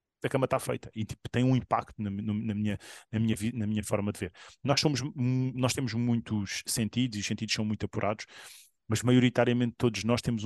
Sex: male